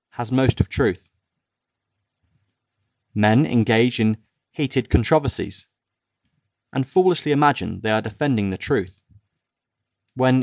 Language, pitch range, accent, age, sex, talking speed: English, 105-135 Hz, British, 30-49, male, 105 wpm